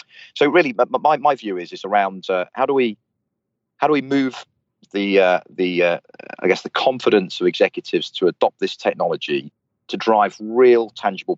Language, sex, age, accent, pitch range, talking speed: English, male, 30-49, British, 90-130 Hz, 180 wpm